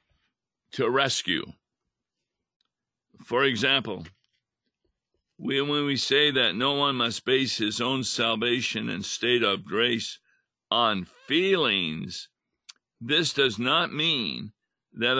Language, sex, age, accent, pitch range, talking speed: English, male, 50-69, American, 115-150 Hz, 105 wpm